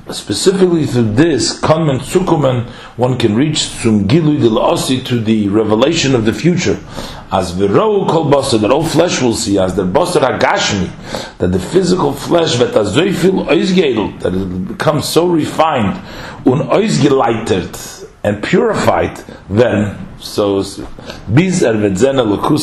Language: English